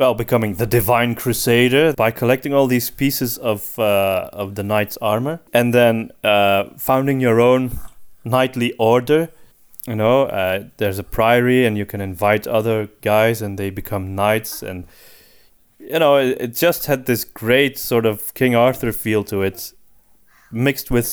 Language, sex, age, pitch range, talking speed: English, male, 20-39, 105-130 Hz, 165 wpm